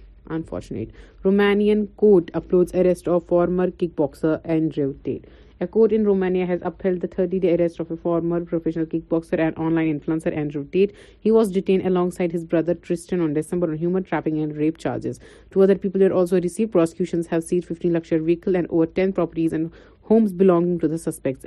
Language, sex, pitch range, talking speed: Urdu, female, 165-195 Hz, 185 wpm